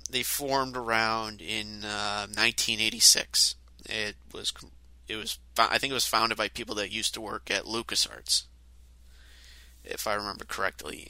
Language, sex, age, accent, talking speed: English, male, 30-49, American, 145 wpm